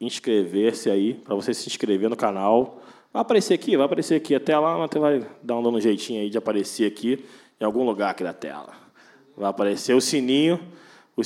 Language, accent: Portuguese, Brazilian